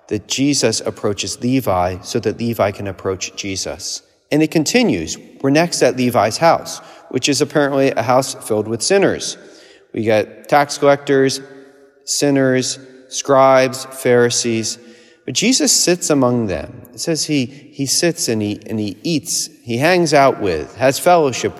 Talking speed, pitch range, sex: 150 wpm, 115-160 Hz, male